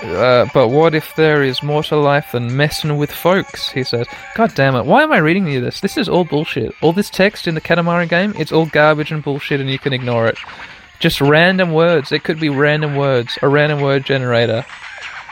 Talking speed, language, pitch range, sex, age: 225 wpm, English, 135-165 Hz, male, 20-39